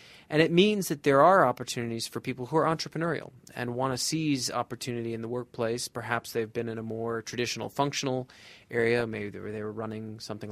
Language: English